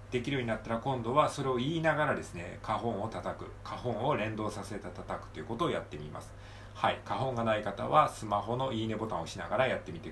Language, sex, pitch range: Japanese, male, 100-125 Hz